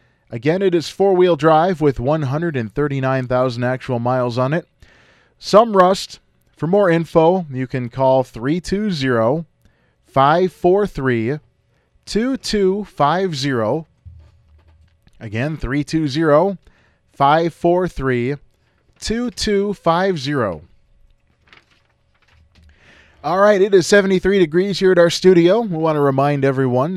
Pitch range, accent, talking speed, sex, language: 120-180 Hz, American, 80 wpm, male, English